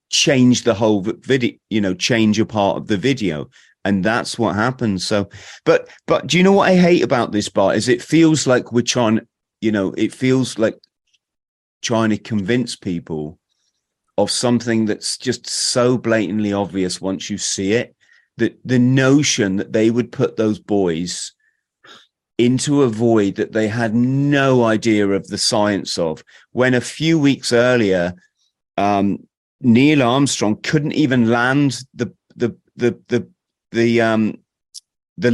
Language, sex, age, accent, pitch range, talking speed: English, male, 30-49, British, 110-140 Hz, 160 wpm